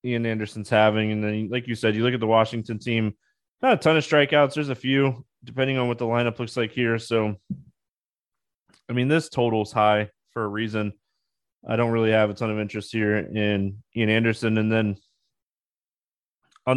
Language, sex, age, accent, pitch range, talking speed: English, male, 20-39, American, 110-135 Hz, 195 wpm